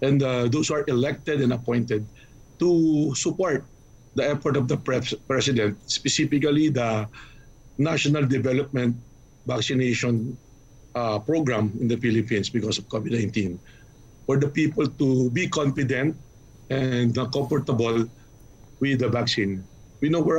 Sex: male